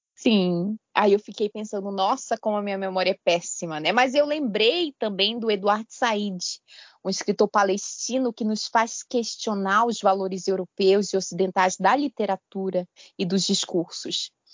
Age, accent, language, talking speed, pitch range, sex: 20-39, Brazilian, Portuguese, 155 wpm, 190-250 Hz, female